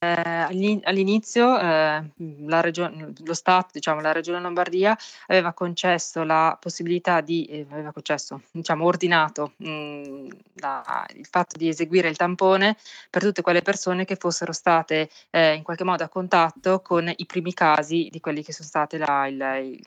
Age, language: 20-39, Italian